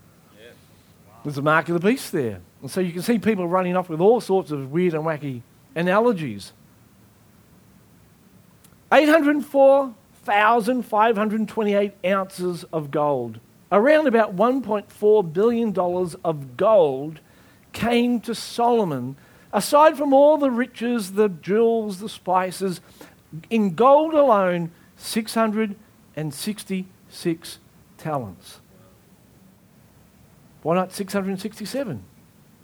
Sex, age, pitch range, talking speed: male, 50-69, 180-240 Hz, 95 wpm